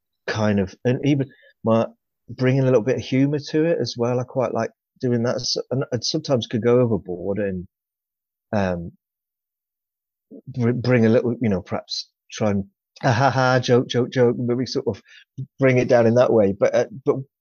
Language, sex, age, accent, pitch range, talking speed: English, male, 30-49, British, 100-125 Hz, 190 wpm